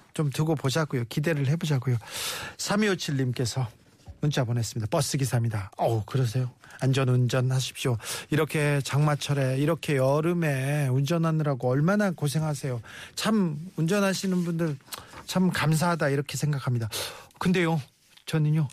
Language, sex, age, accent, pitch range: Korean, male, 40-59, native, 135-190 Hz